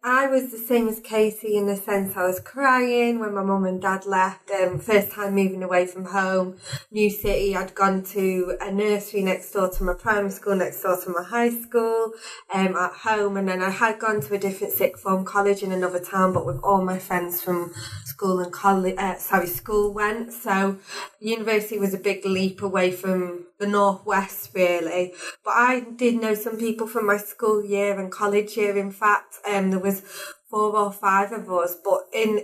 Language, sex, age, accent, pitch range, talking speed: English, female, 20-39, British, 185-210 Hz, 200 wpm